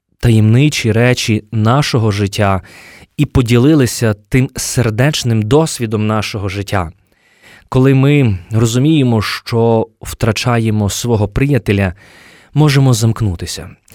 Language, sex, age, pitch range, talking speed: Ukrainian, male, 20-39, 110-145 Hz, 85 wpm